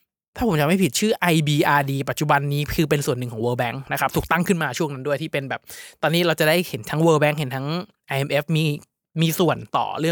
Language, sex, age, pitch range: Thai, male, 20-39, 140-170 Hz